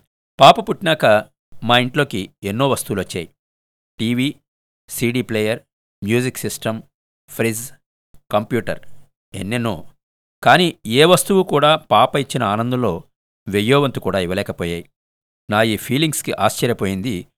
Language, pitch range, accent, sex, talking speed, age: Telugu, 105-140 Hz, native, male, 100 wpm, 50-69